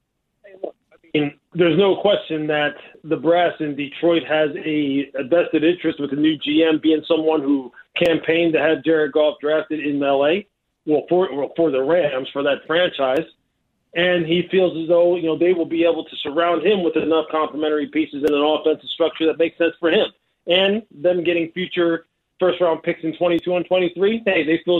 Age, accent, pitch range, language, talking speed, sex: 40-59, American, 155-180 Hz, English, 190 wpm, male